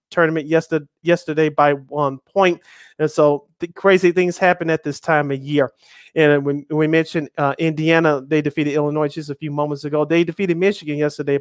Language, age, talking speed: English, 30-49, 190 wpm